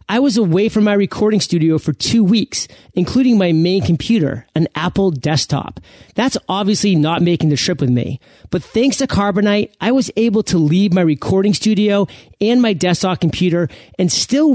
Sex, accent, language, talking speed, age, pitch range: male, American, English, 175 wpm, 30-49, 155-215 Hz